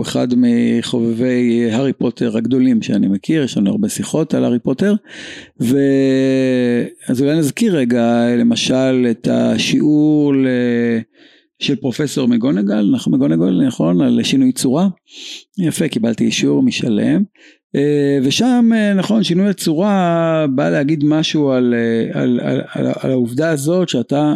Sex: male